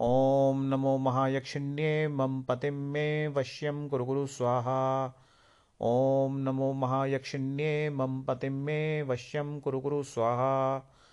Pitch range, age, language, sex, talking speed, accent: 130-140 Hz, 40-59, Hindi, male, 85 wpm, native